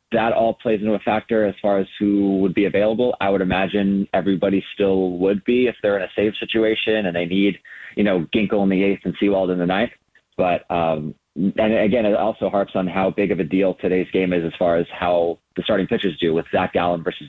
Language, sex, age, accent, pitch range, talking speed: English, male, 30-49, American, 90-110 Hz, 235 wpm